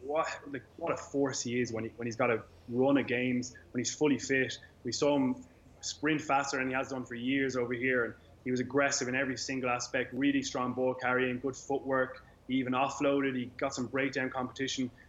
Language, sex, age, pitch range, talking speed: English, male, 20-39, 120-140 Hz, 200 wpm